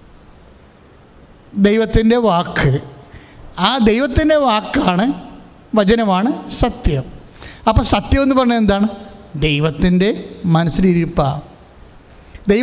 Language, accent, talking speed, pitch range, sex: English, Indian, 50 wpm, 175-250 Hz, male